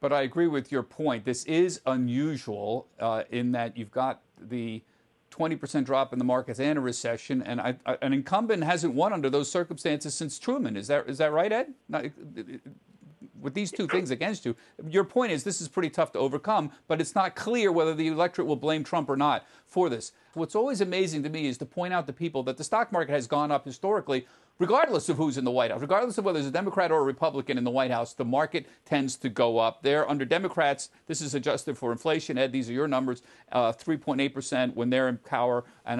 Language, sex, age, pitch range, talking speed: English, male, 50-69, 130-165 Hz, 225 wpm